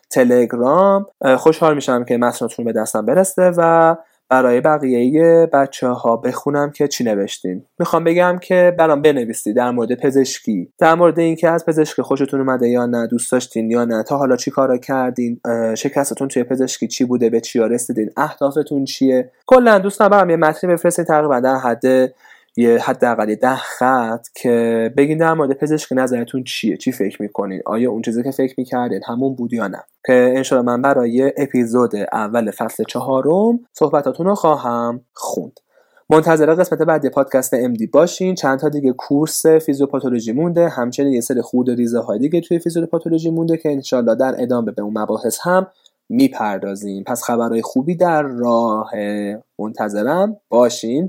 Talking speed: 155 wpm